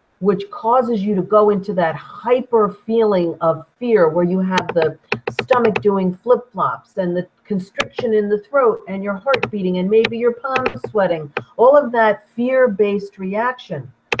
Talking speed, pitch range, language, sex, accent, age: 160 wpm, 190-255 Hz, English, female, American, 50-69